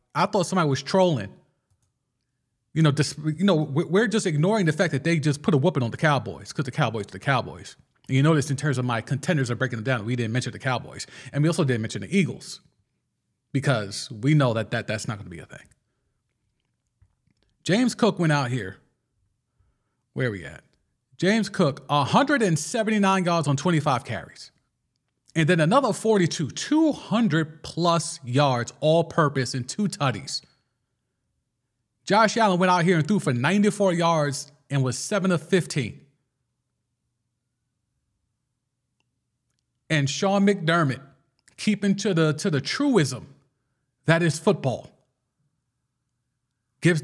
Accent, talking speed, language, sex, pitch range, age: American, 150 wpm, English, male, 125-170 Hz, 30-49